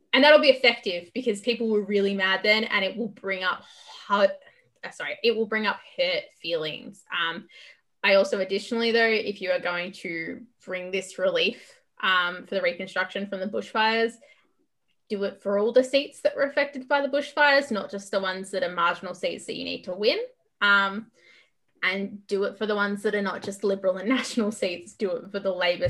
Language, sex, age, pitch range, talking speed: English, female, 20-39, 185-230 Hz, 205 wpm